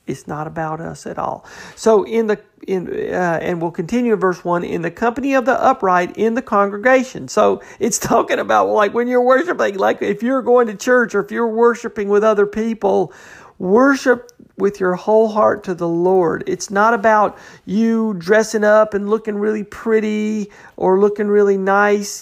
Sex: male